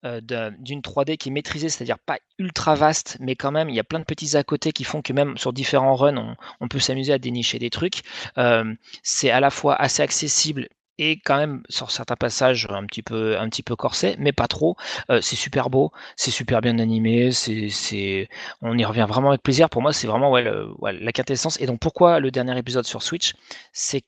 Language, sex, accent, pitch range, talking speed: French, male, French, 110-140 Hz, 230 wpm